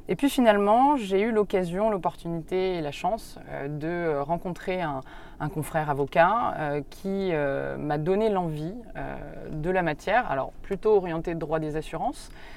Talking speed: 145 wpm